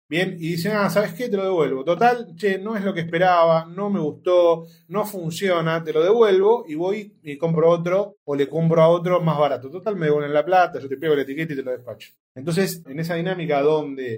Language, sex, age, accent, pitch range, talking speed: Spanish, male, 30-49, Argentinian, 140-185 Hz, 235 wpm